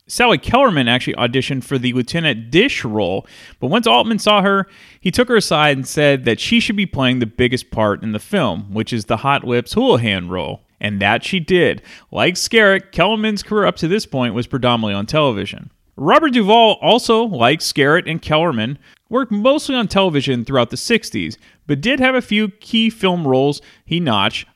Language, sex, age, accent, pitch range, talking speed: English, male, 30-49, American, 115-190 Hz, 190 wpm